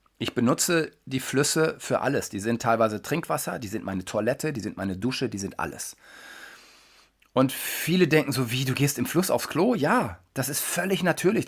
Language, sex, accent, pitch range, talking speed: German, male, German, 120-145 Hz, 195 wpm